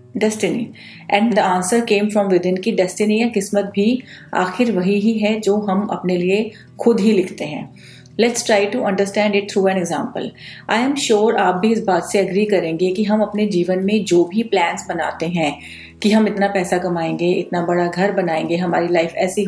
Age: 30-49